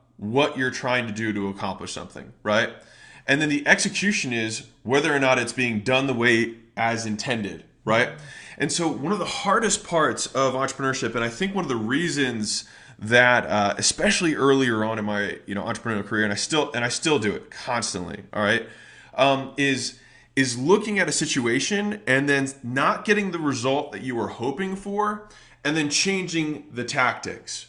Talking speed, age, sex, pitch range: 185 wpm, 20-39, male, 115-155 Hz